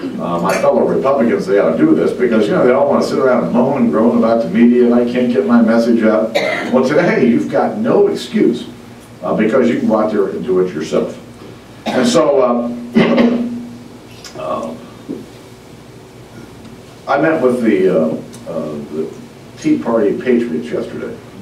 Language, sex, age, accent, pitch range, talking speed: English, male, 60-79, American, 90-130 Hz, 175 wpm